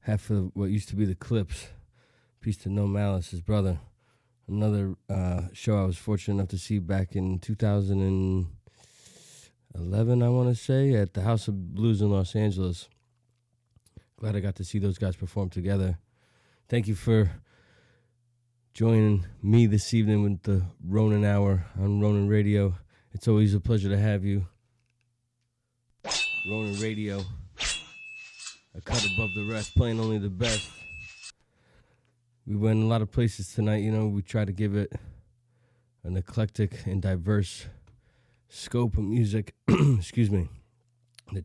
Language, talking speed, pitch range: English, 150 wpm, 100-120 Hz